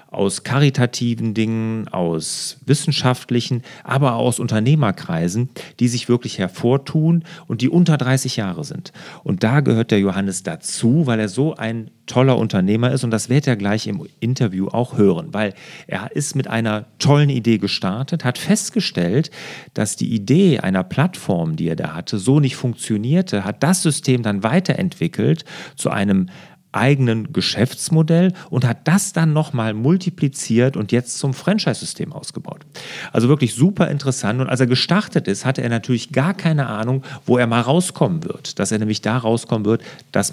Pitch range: 115-165 Hz